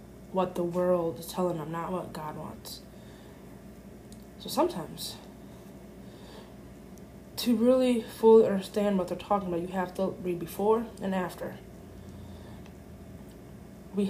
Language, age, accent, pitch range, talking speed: English, 20-39, American, 165-200 Hz, 120 wpm